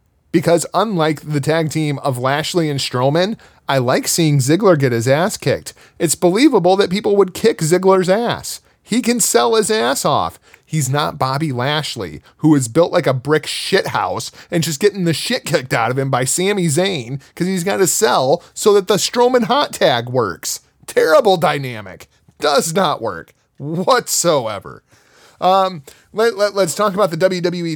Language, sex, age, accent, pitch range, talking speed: English, male, 30-49, American, 135-180 Hz, 175 wpm